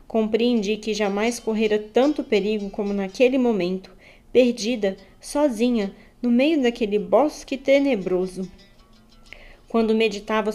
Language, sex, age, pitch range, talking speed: Portuguese, female, 20-39, 195-235 Hz, 100 wpm